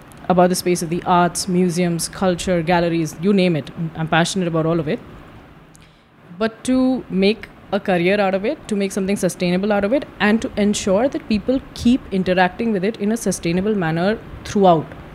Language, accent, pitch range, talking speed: Hindi, native, 170-205 Hz, 185 wpm